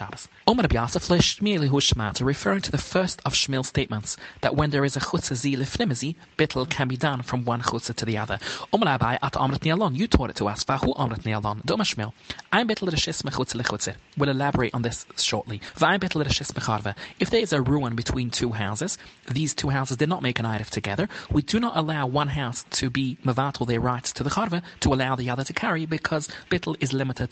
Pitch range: 115-150 Hz